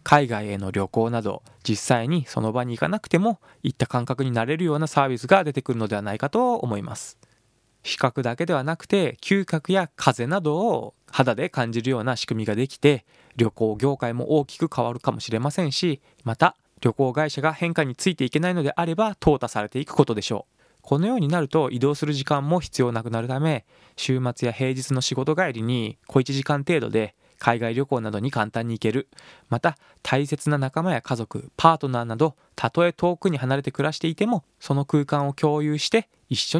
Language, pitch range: Japanese, 120-160 Hz